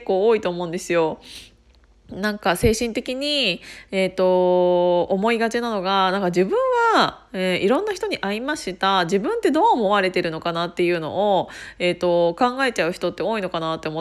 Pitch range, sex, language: 180-290 Hz, female, Japanese